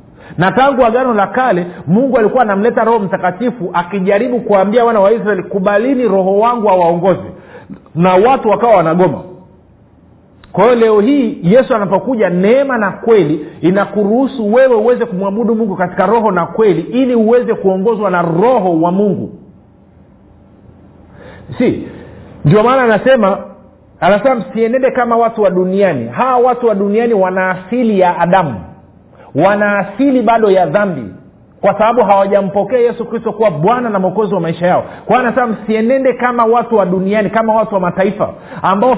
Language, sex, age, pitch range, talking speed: Swahili, male, 50-69, 185-240 Hz, 140 wpm